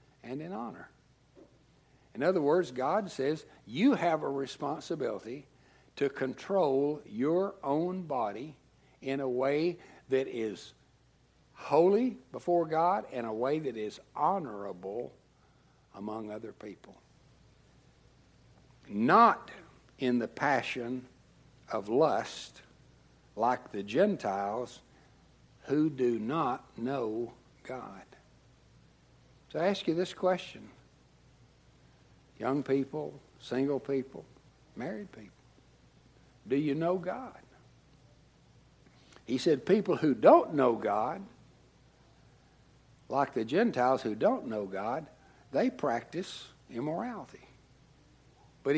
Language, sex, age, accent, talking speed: English, male, 60-79, American, 100 wpm